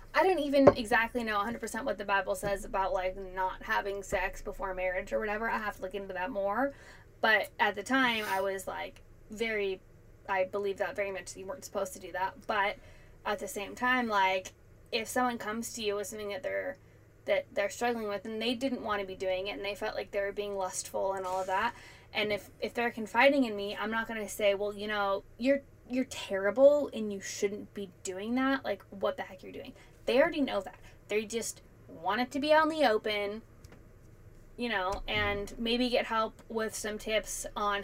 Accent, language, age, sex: American, English, 10-29, female